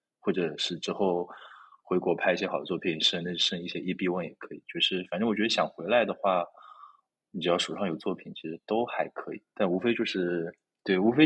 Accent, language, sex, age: native, Chinese, male, 20-39